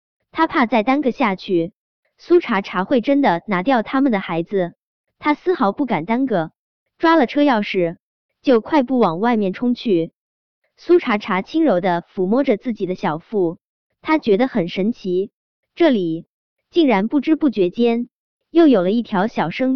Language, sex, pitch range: Chinese, male, 190-275 Hz